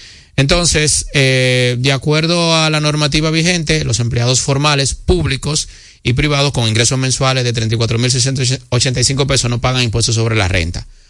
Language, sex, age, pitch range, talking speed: Spanish, male, 30-49, 115-145 Hz, 140 wpm